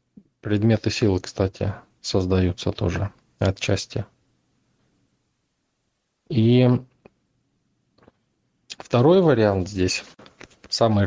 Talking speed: 60 wpm